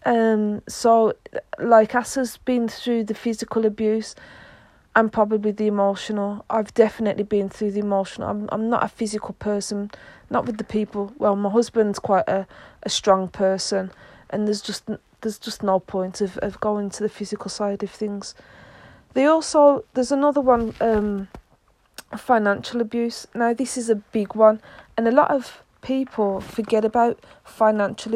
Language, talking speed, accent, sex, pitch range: English, 160 wpm, British, female, 205-230 Hz